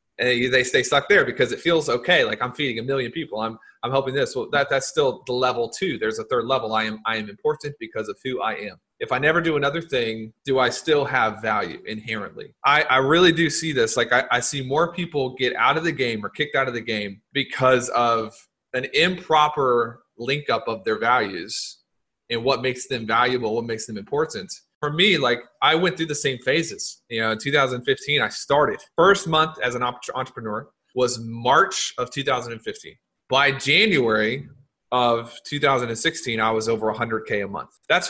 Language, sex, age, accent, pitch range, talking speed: English, male, 30-49, American, 120-150 Hz, 200 wpm